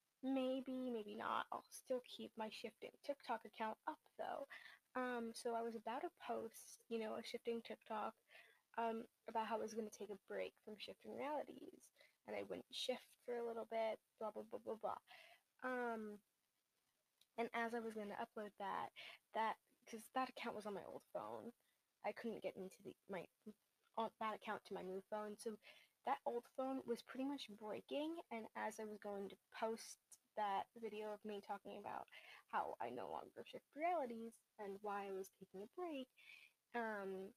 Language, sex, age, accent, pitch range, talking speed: English, female, 10-29, American, 210-250 Hz, 185 wpm